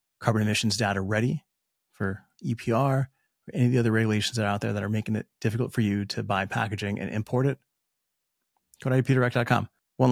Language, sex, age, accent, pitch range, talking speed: English, male, 30-49, American, 100-120 Hz, 195 wpm